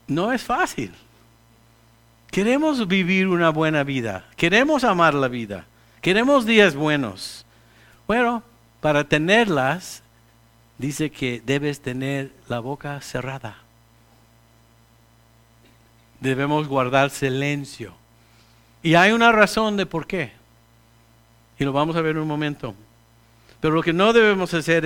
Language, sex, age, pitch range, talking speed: English, male, 50-69, 115-160 Hz, 120 wpm